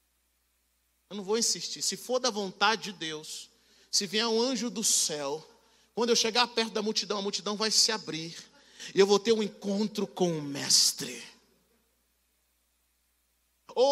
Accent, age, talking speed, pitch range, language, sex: Brazilian, 40-59, 160 wpm, 170-240 Hz, Portuguese, male